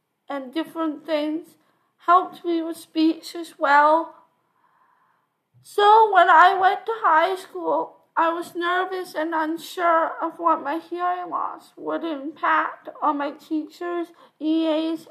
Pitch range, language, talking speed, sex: 285-345 Hz, English, 125 wpm, female